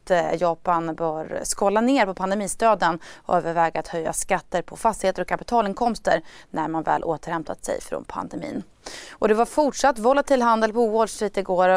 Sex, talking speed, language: female, 165 wpm, Swedish